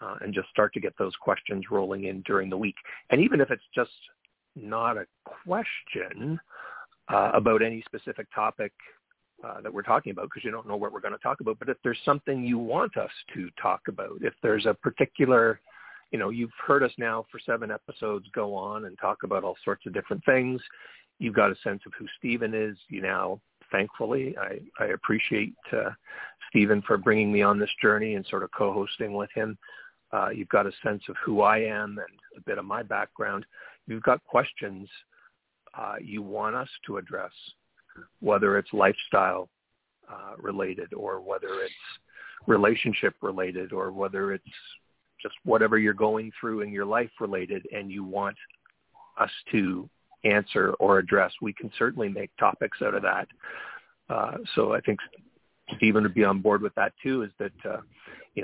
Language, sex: English, male